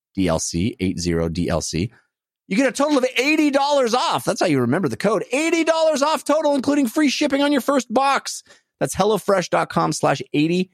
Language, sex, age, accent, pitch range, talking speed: English, male, 30-49, American, 105-175 Hz, 170 wpm